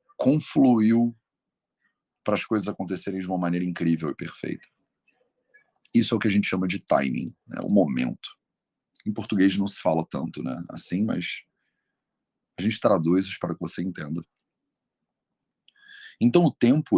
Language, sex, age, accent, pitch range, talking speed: English, male, 40-59, Brazilian, 85-115 Hz, 150 wpm